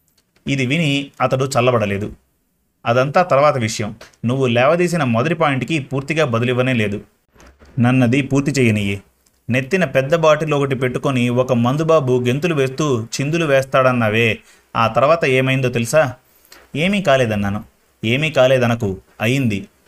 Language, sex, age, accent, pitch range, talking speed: Telugu, male, 30-49, native, 115-150 Hz, 110 wpm